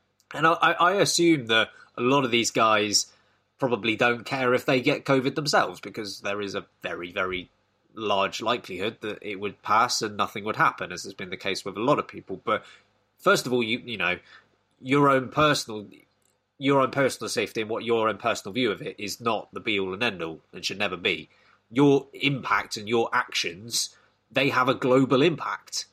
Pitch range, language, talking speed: 110-145 Hz, English, 205 wpm